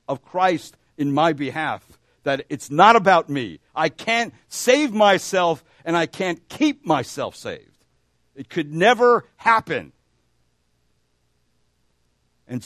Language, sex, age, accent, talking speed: English, male, 60-79, American, 120 wpm